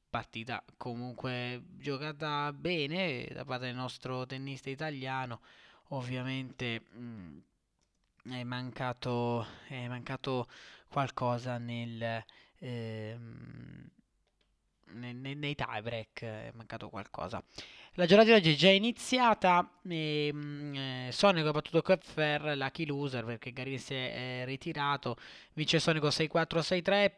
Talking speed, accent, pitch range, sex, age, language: 110 wpm, native, 125-150 Hz, male, 20-39, Italian